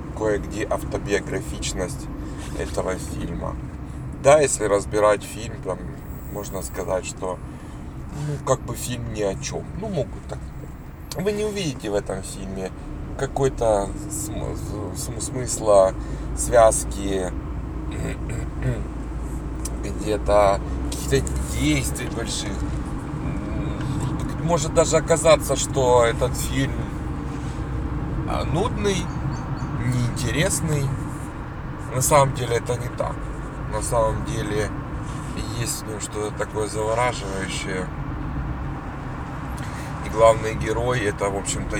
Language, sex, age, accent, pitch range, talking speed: Ukrainian, male, 30-49, native, 105-145 Hz, 90 wpm